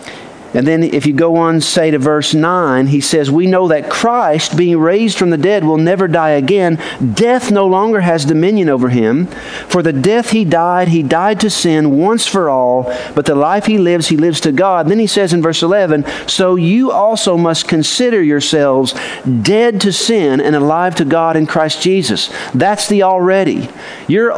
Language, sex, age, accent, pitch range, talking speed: English, male, 50-69, American, 145-195 Hz, 195 wpm